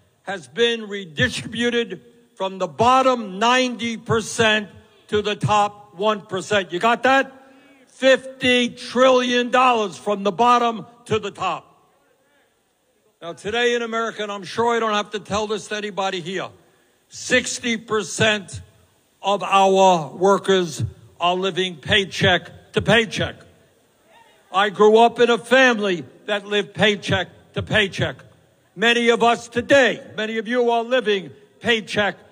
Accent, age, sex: American, 60-79, male